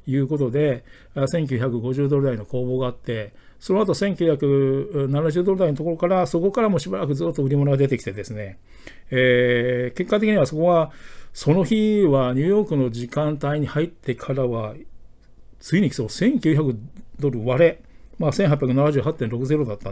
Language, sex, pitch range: Japanese, male, 125-170 Hz